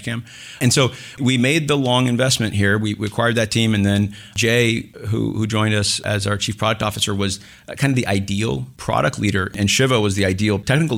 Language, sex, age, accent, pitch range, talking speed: English, male, 40-59, American, 100-120 Hz, 215 wpm